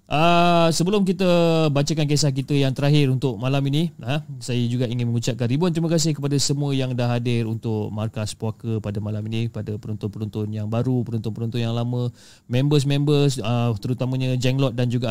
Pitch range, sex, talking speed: 115-150 Hz, male, 170 wpm